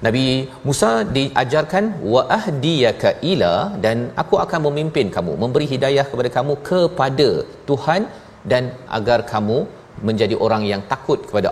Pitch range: 110-135 Hz